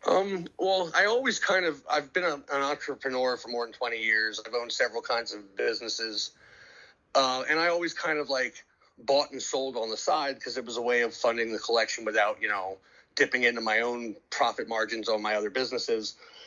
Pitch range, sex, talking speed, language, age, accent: 115-140 Hz, male, 210 wpm, English, 30-49, American